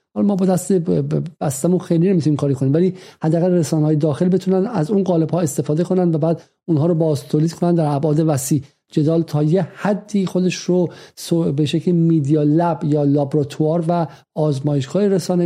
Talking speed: 170 wpm